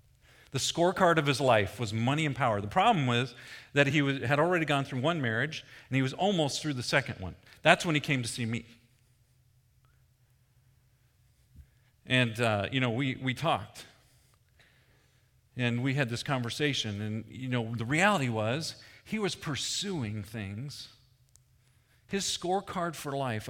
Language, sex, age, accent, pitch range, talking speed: English, male, 40-59, American, 120-145 Hz, 155 wpm